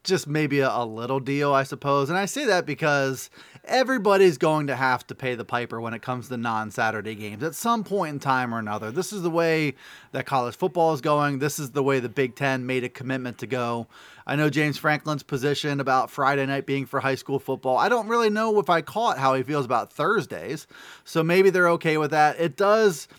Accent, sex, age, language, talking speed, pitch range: American, male, 30-49, English, 225 wpm, 130-170 Hz